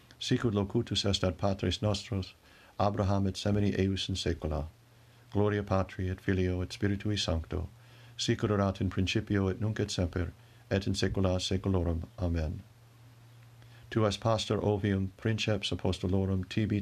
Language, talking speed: English, 140 wpm